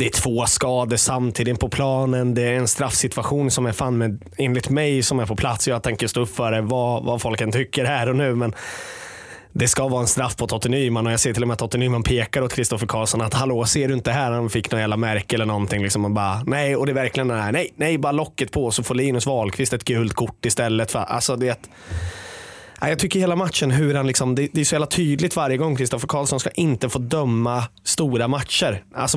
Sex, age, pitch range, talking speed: male, 20-39, 115-140 Hz, 240 wpm